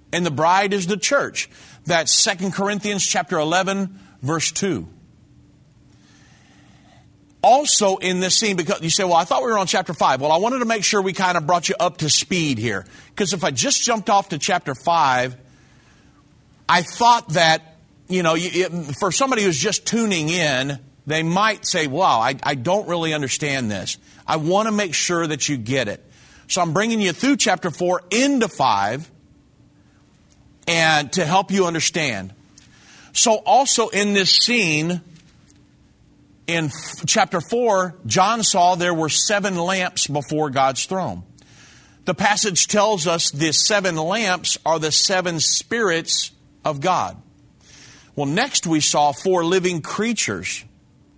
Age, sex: 40-59, male